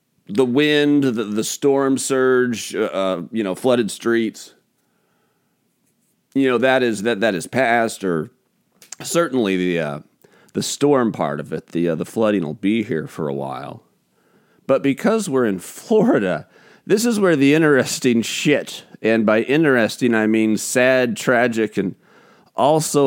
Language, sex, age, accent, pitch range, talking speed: English, male, 40-59, American, 100-140 Hz, 155 wpm